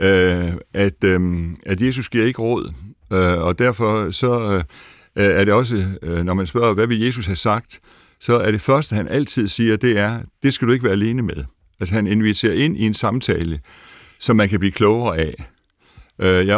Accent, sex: native, male